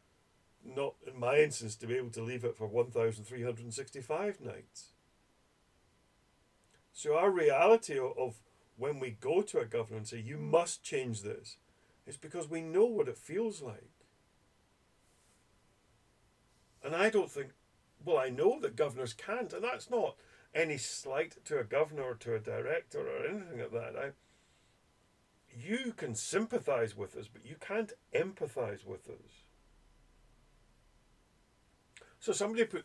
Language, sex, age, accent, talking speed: English, male, 50-69, British, 145 wpm